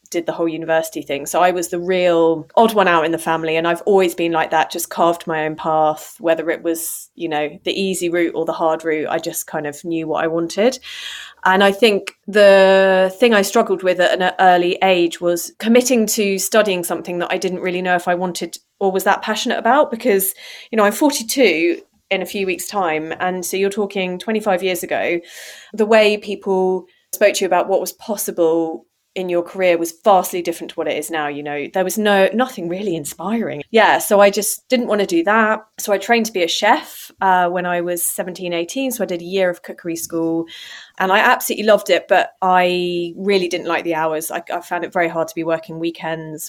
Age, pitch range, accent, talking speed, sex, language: 30-49, 165-200 Hz, British, 225 wpm, female, English